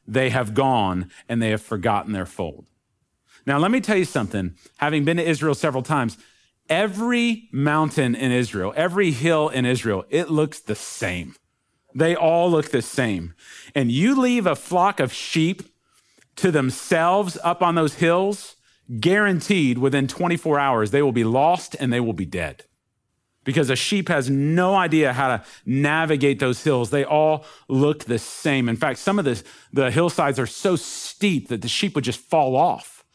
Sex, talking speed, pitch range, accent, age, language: male, 175 wpm, 125-170 Hz, American, 40-59, English